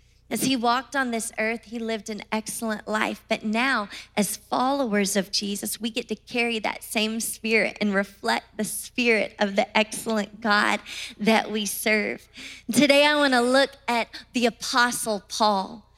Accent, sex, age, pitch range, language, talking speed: American, female, 30-49, 220-295 Hz, English, 160 wpm